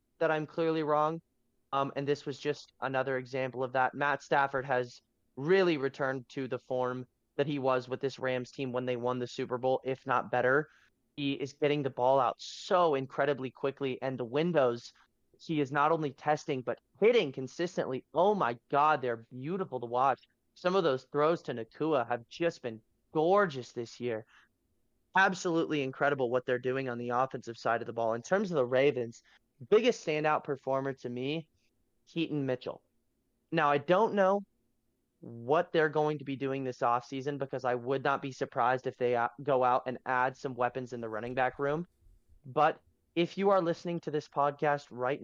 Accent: American